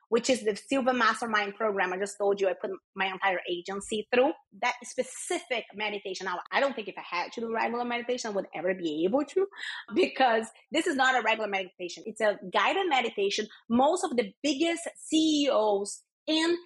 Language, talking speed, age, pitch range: English, 190 wpm, 30-49, 205-260 Hz